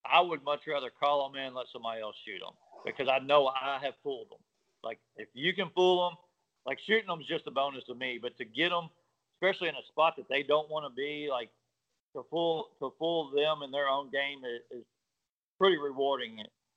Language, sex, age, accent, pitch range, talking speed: English, male, 50-69, American, 125-155 Hz, 225 wpm